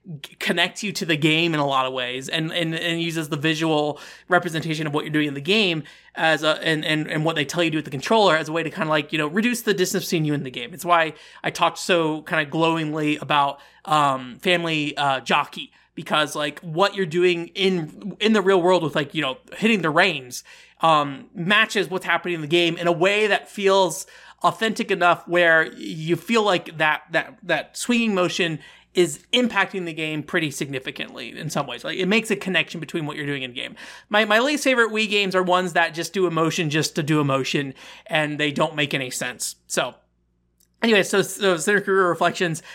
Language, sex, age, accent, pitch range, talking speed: English, male, 20-39, American, 155-190 Hz, 220 wpm